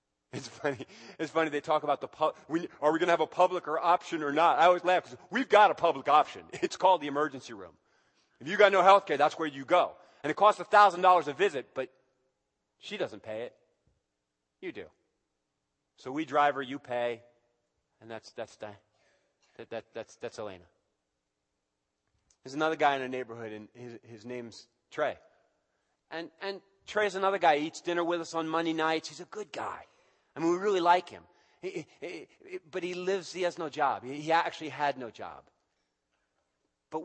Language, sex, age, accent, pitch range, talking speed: English, male, 30-49, American, 115-170 Hz, 195 wpm